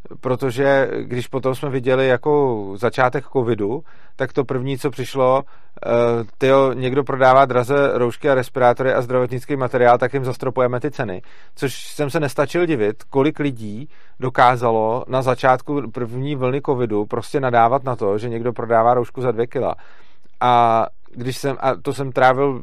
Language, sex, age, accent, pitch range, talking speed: Czech, male, 40-59, native, 125-140 Hz, 155 wpm